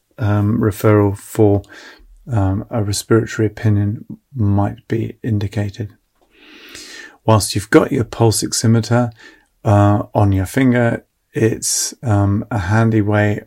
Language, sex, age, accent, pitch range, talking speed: English, male, 30-49, British, 100-115 Hz, 110 wpm